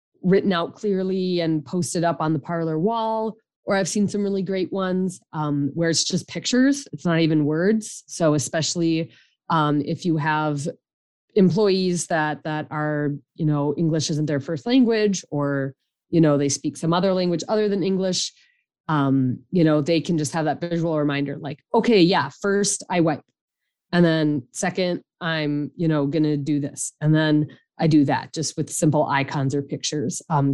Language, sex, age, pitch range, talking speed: English, female, 30-49, 145-180 Hz, 180 wpm